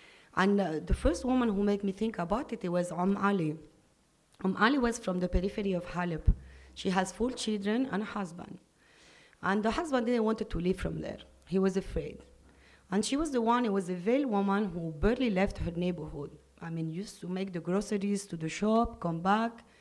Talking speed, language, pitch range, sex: 210 wpm, English, 175-225 Hz, female